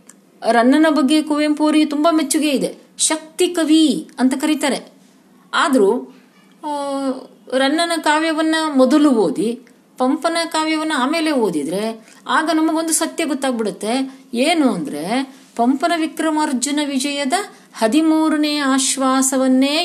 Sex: female